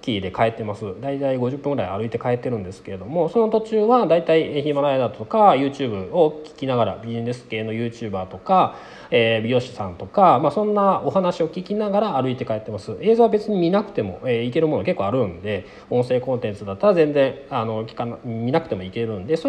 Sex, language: male, Japanese